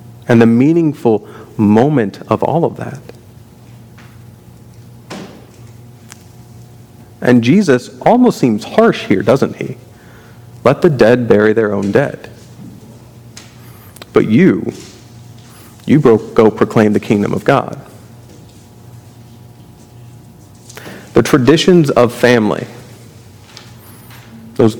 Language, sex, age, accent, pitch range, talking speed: English, male, 40-59, American, 115-125 Hz, 90 wpm